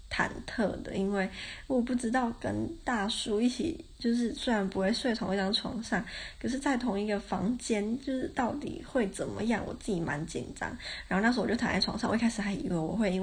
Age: 20-39